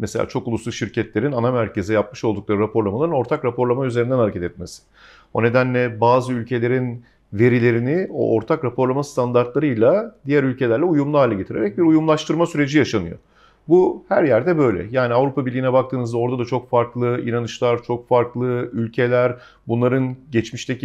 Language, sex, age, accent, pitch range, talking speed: Turkish, male, 50-69, native, 120-150 Hz, 145 wpm